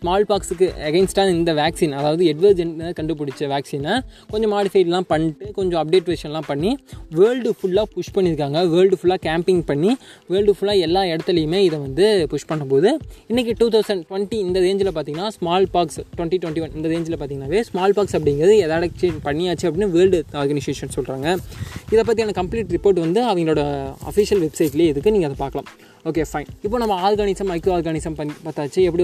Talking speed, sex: 155 wpm, male